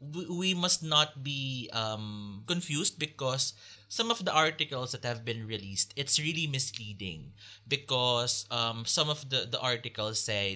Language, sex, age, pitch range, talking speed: English, male, 20-39, 105-150 Hz, 150 wpm